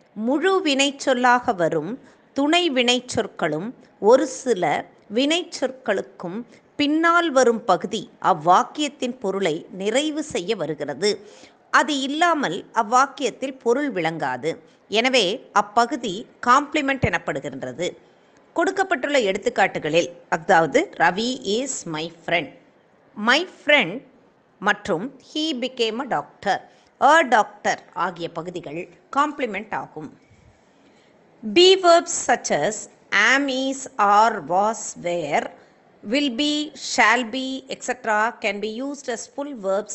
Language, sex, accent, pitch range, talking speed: Tamil, female, native, 205-285 Hz, 100 wpm